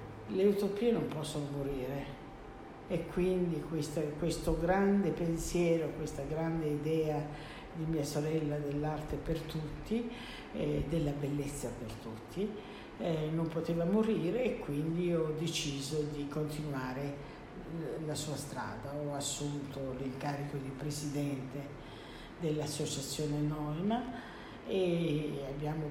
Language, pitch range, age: Italian, 145-170 Hz, 50-69